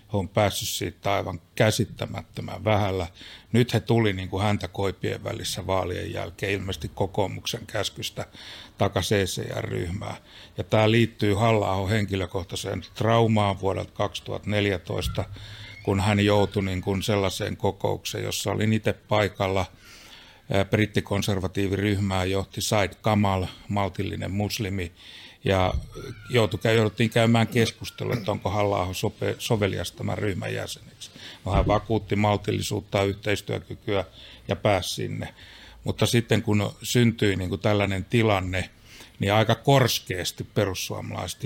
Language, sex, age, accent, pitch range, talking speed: Finnish, male, 60-79, native, 95-110 Hz, 115 wpm